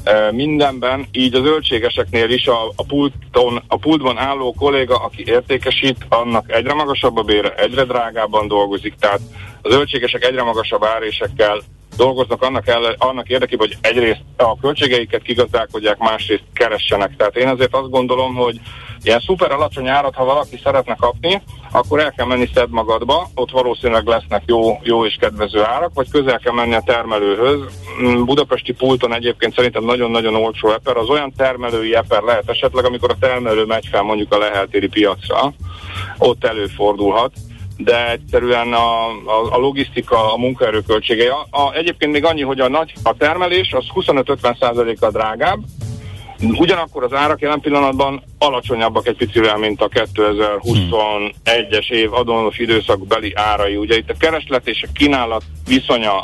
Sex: male